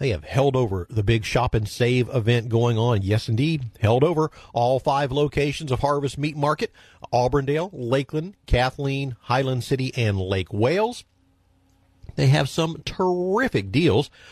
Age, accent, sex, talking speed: 50-69, American, male, 150 wpm